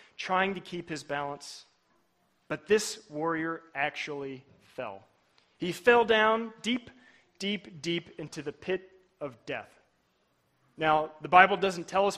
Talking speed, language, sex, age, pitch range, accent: 135 wpm, English, male, 30-49, 170-255 Hz, American